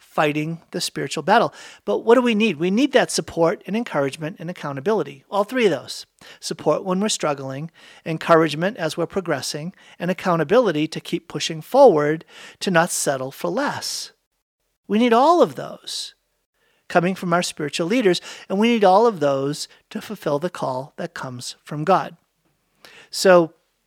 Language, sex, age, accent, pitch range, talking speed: English, male, 50-69, American, 155-200 Hz, 165 wpm